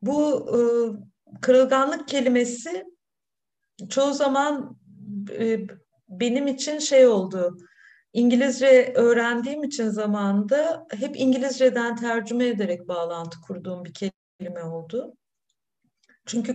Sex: female